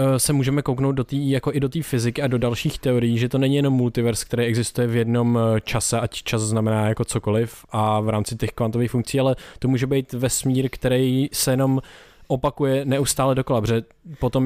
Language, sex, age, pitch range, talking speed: Czech, male, 20-39, 115-135 Hz, 200 wpm